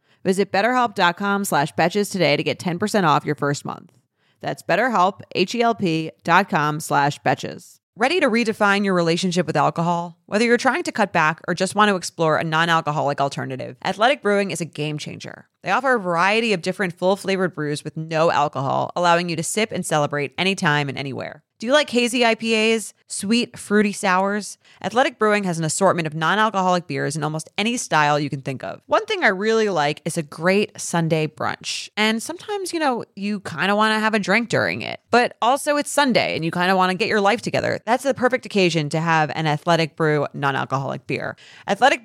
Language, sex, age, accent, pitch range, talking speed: English, female, 30-49, American, 155-210 Hz, 195 wpm